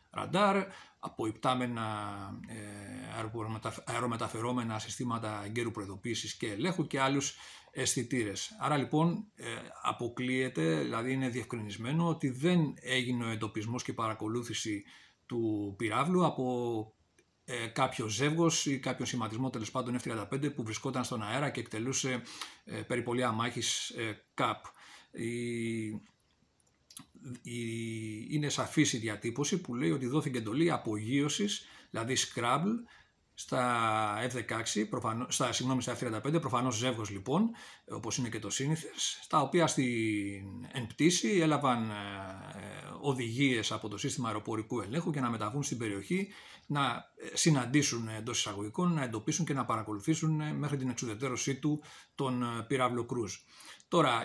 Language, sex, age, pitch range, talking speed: Greek, male, 40-59, 110-140 Hz, 115 wpm